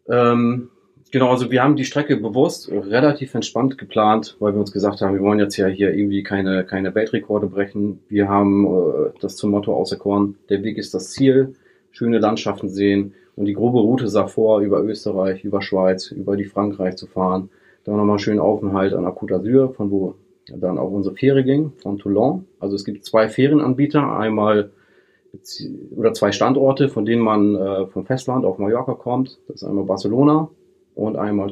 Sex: male